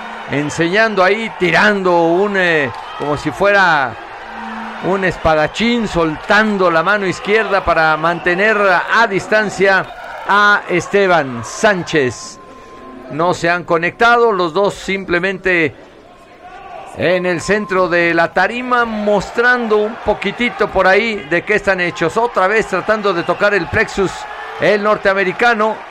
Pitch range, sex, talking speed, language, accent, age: 175-205 Hz, male, 120 wpm, Spanish, Mexican, 50-69